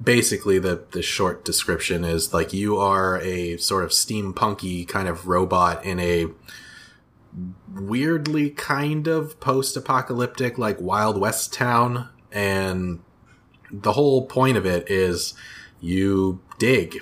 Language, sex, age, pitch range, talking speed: English, male, 30-49, 90-110 Hz, 125 wpm